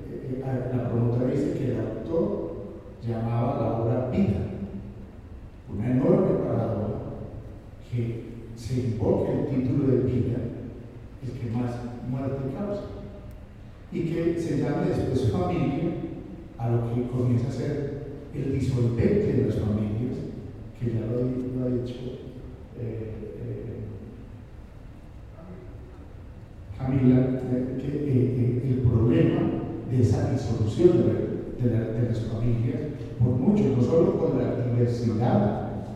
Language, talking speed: Spanish, 120 wpm